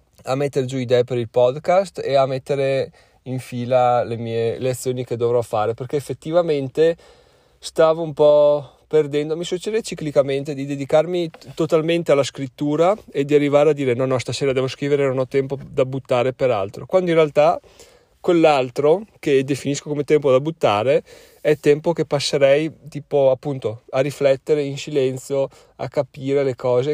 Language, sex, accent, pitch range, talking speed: Italian, male, native, 125-150 Hz, 165 wpm